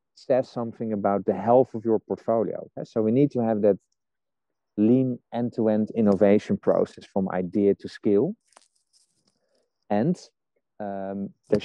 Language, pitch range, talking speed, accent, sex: English, 100-120 Hz, 135 wpm, Dutch, male